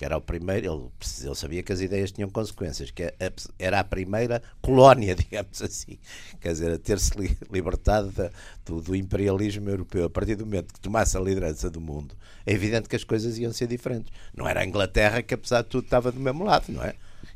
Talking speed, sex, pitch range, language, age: 205 wpm, male, 90-115 Hz, Portuguese, 60-79